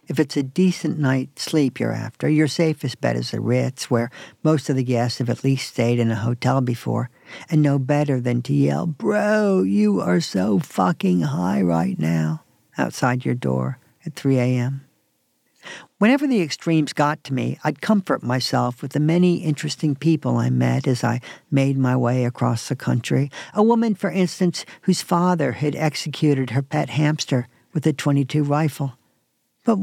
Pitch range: 125-160 Hz